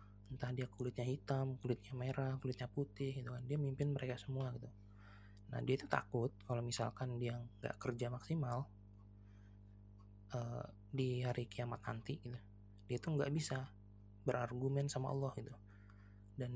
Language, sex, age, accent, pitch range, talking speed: English, male, 20-39, Indonesian, 100-135 Hz, 140 wpm